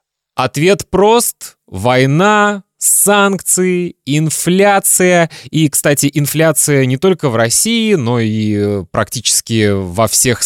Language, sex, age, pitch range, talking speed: Russian, male, 20-39, 110-160 Hz, 100 wpm